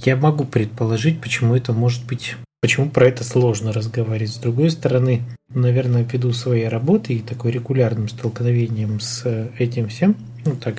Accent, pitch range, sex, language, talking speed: native, 120-140 Hz, male, Russian, 155 wpm